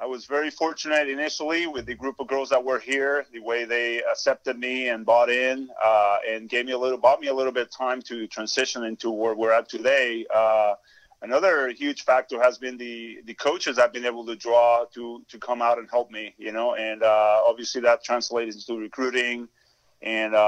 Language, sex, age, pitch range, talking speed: English, male, 30-49, 115-130 Hz, 210 wpm